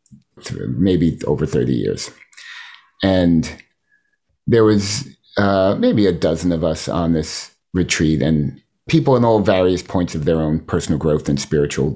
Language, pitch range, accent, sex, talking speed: English, 85-120 Hz, American, male, 145 wpm